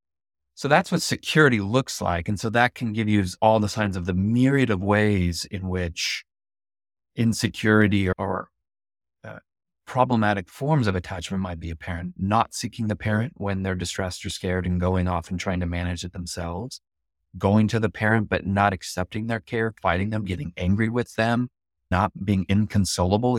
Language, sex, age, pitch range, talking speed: English, male, 30-49, 90-110 Hz, 175 wpm